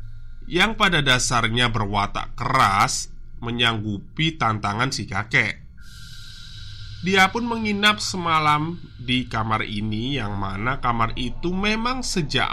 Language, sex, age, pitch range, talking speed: Indonesian, male, 20-39, 110-160 Hz, 105 wpm